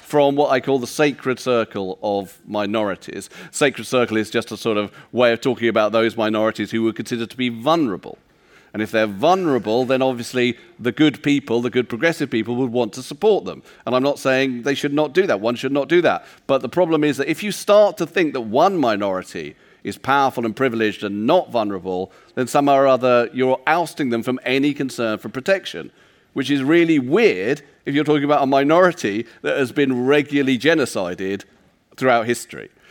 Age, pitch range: 40-59, 115-140 Hz